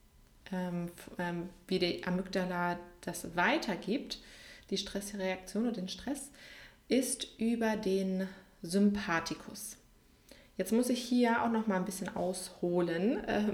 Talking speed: 105 wpm